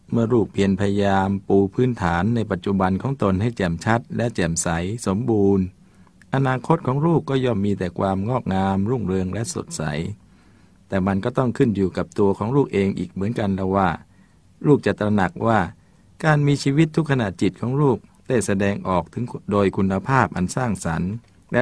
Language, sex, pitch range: Thai, male, 95-120 Hz